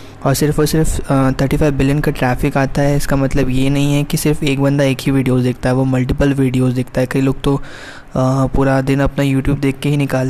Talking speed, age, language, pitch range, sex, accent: 240 wpm, 20-39, Hindi, 130-140 Hz, male, native